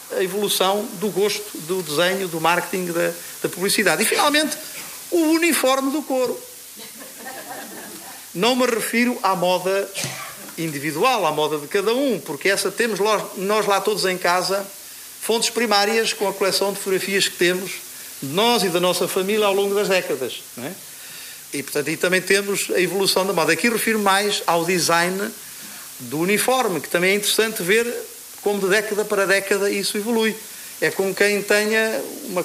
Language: Portuguese